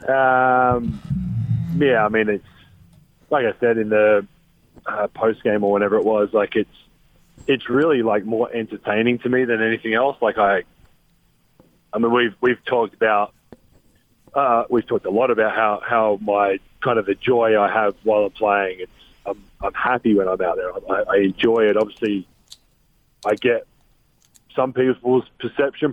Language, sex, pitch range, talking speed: English, male, 105-125 Hz, 170 wpm